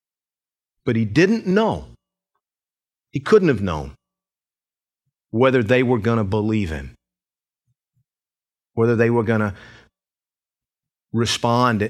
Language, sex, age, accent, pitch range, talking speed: English, male, 50-69, American, 105-145 Hz, 105 wpm